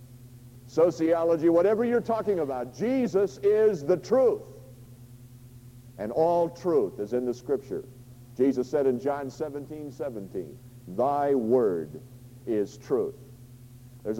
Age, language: 50-69, English